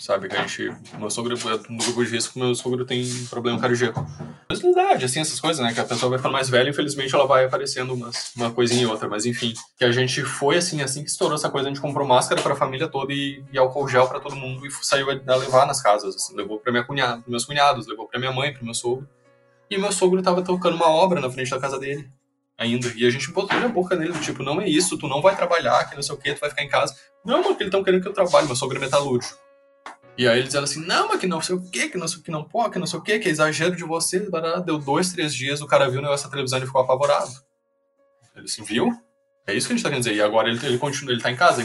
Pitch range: 125-160 Hz